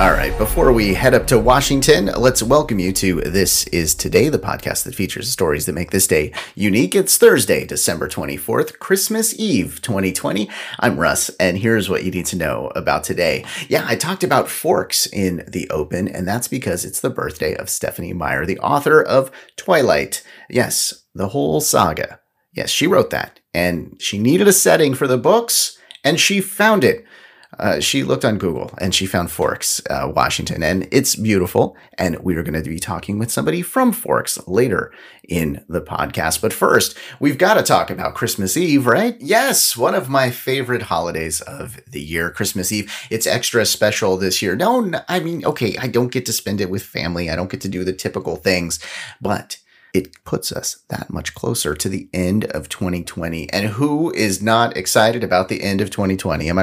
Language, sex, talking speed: English, male, 195 wpm